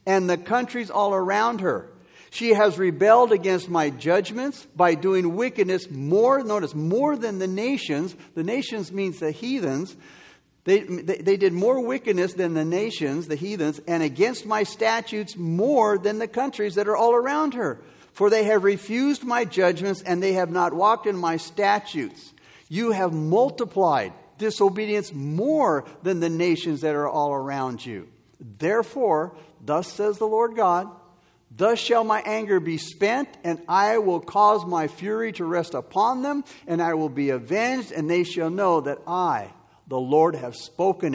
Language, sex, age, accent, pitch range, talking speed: English, male, 50-69, American, 165-225 Hz, 165 wpm